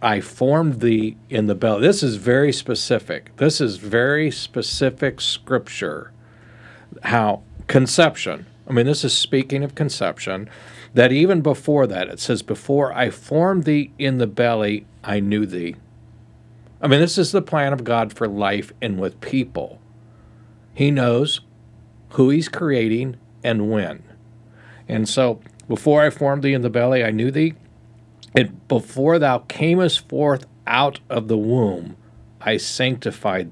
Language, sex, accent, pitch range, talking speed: English, male, American, 110-130 Hz, 150 wpm